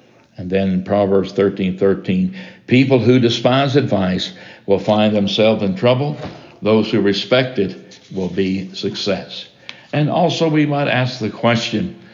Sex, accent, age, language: male, American, 60-79, English